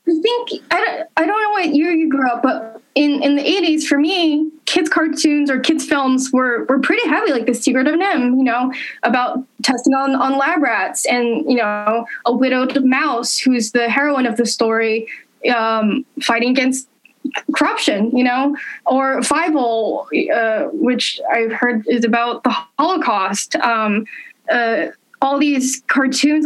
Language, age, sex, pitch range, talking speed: English, 10-29, female, 230-275 Hz, 170 wpm